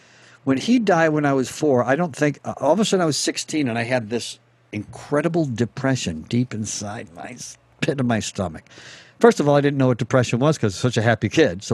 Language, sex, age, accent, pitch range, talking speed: English, male, 60-79, American, 120-155 Hz, 250 wpm